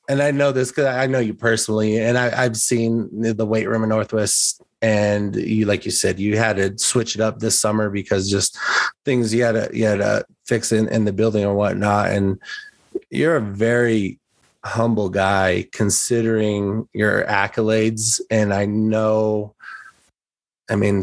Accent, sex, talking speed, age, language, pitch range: American, male, 175 wpm, 30-49, English, 100-115 Hz